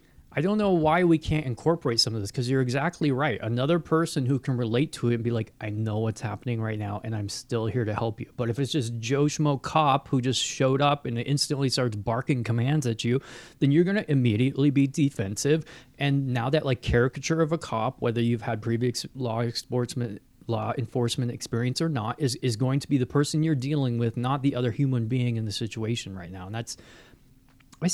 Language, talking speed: English, 220 wpm